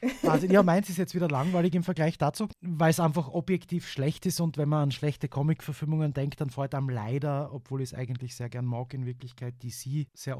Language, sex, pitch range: German, male, 125-150 Hz